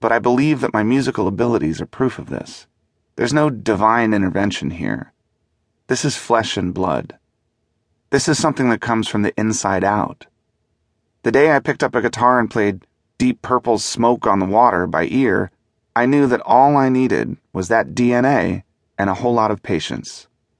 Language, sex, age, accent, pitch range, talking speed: English, male, 30-49, American, 95-120 Hz, 180 wpm